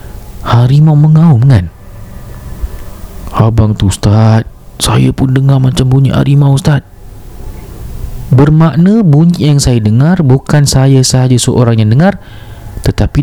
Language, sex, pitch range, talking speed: Malay, male, 95-135 Hz, 115 wpm